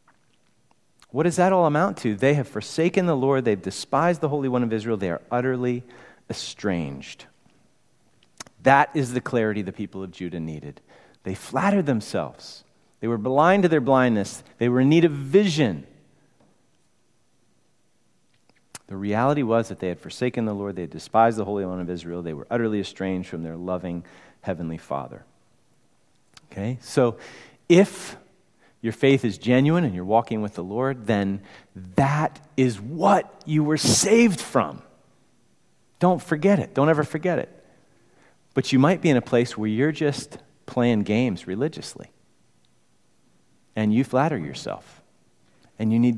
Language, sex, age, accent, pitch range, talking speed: English, male, 40-59, American, 100-145 Hz, 155 wpm